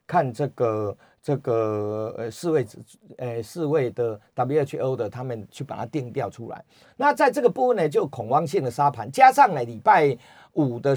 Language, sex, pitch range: Chinese, male, 125-180 Hz